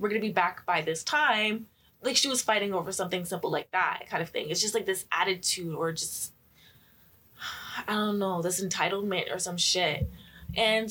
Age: 20-39